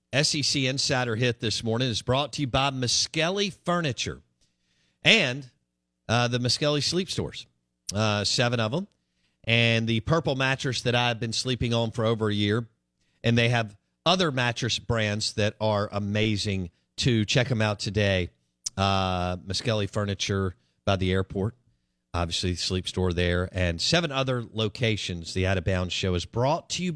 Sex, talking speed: male, 160 wpm